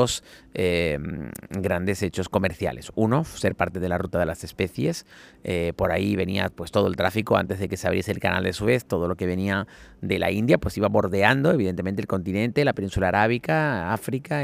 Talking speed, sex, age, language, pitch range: 195 wpm, male, 40-59, Spanish, 95-110 Hz